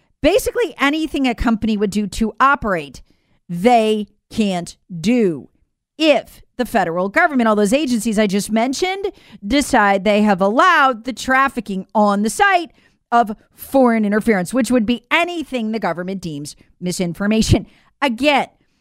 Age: 40-59